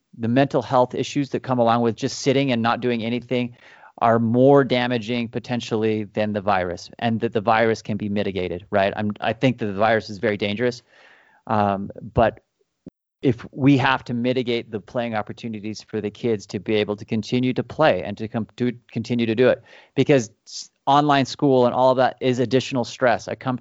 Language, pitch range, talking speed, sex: English, 110-125 Hz, 200 wpm, male